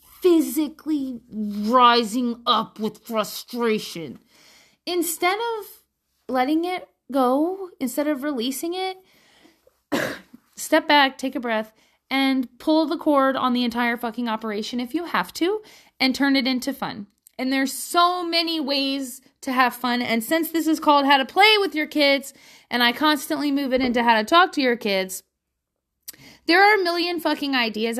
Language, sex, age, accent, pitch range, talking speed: English, female, 30-49, American, 230-295 Hz, 160 wpm